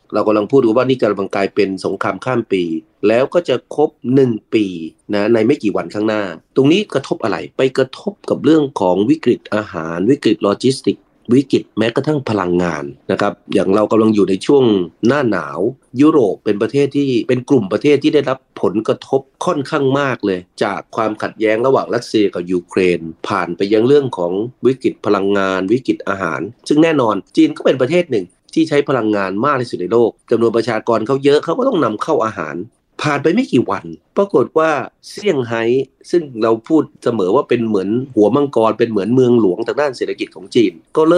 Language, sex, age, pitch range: Thai, male, 30-49, 105-140 Hz